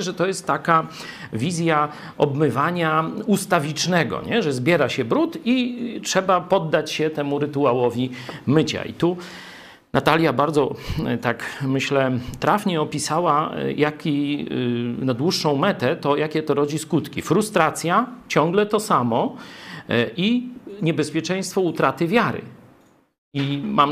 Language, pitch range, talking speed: Polish, 145-190 Hz, 110 wpm